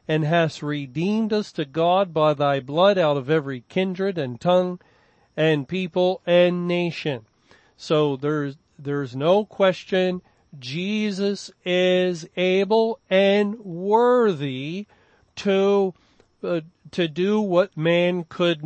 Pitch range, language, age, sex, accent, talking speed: 150-180 Hz, English, 40-59, male, American, 115 wpm